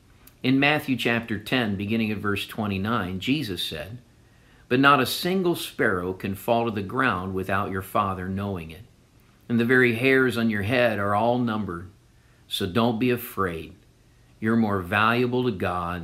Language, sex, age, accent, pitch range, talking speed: English, male, 50-69, American, 95-125 Hz, 165 wpm